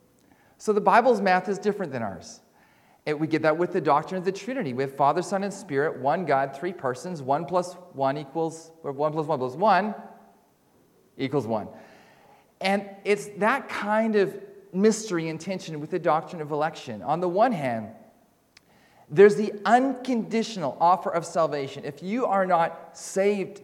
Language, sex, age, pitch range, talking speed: English, male, 40-59, 165-215 Hz, 175 wpm